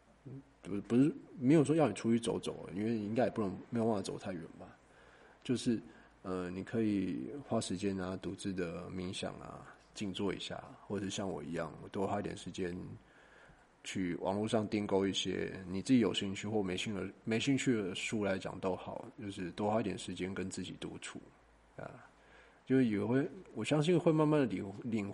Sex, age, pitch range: male, 20-39, 95-110 Hz